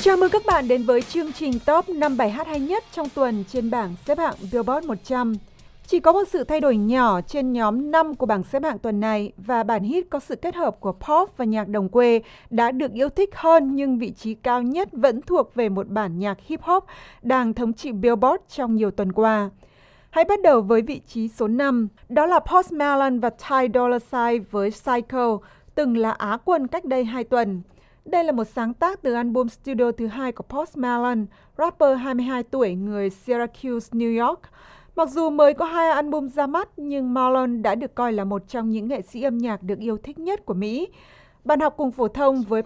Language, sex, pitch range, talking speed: Vietnamese, female, 220-295 Hz, 215 wpm